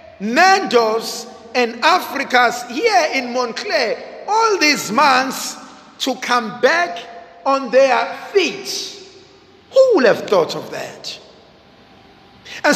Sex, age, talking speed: male, 50-69, 105 wpm